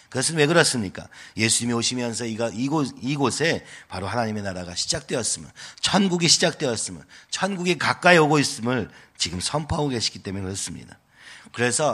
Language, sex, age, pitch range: Korean, male, 40-59, 100-140 Hz